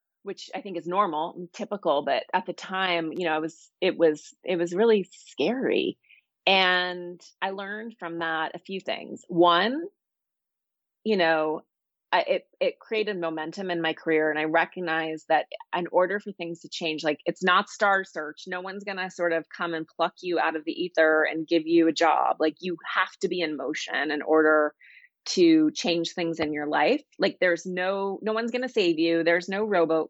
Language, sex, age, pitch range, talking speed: English, female, 30-49, 160-200 Hz, 195 wpm